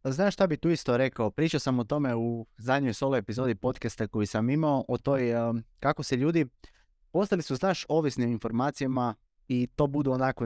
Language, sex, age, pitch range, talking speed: Croatian, male, 20-39, 115-140 Hz, 190 wpm